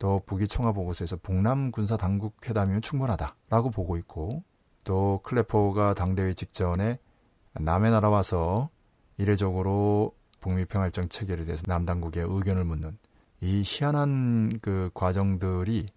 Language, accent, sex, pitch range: Korean, native, male, 95-120 Hz